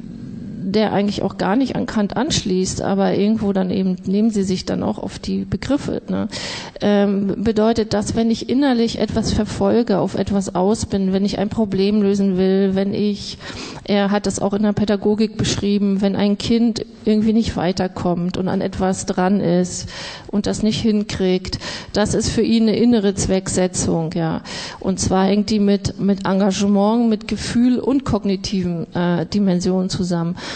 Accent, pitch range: German, 195-215 Hz